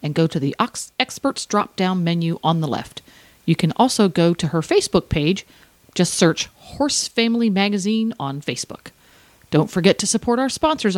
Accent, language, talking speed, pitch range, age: American, English, 175 wpm, 165-230 Hz, 40-59